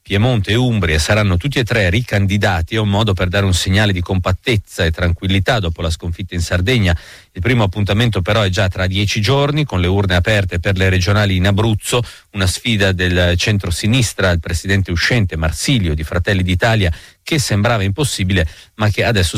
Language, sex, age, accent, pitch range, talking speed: Italian, male, 40-59, native, 90-115 Hz, 185 wpm